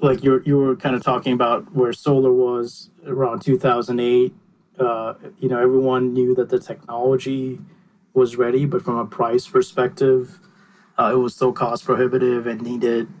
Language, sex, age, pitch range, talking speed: English, male, 30-49, 115-140 Hz, 160 wpm